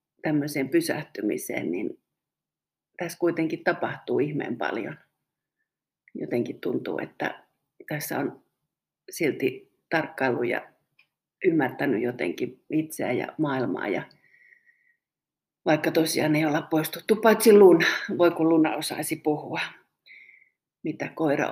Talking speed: 100 wpm